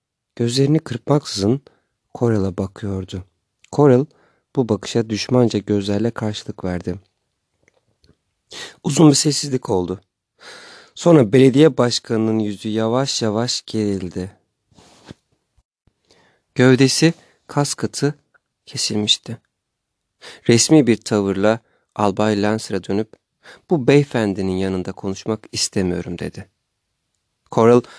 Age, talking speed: 40-59, 85 wpm